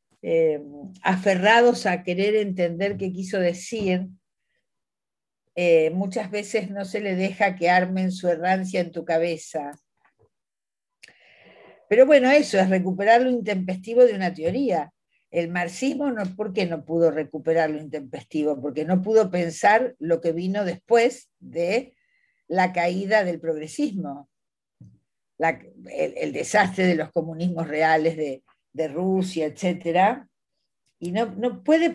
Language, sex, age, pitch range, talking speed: Spanish, female, 50-69, 170-220 Hz, 135 wpm